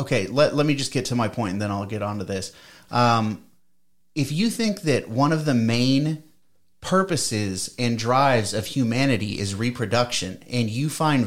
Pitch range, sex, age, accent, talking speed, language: 105-140 Hz, male, 30-49, American, 185 wpm, English